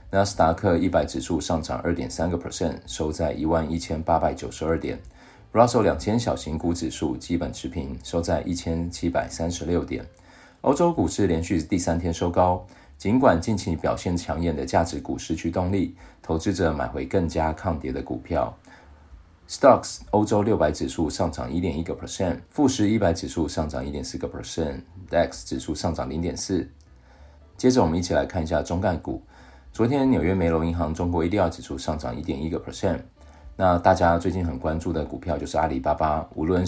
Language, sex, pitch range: Chinese, male, 75-90 Hz